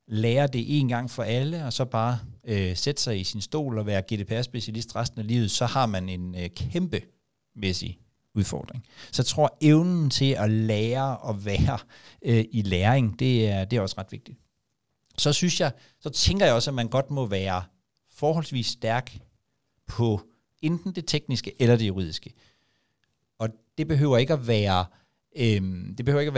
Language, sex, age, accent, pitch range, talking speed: Danish, male, 60-79, native, 100-130 Hz, 185 wpm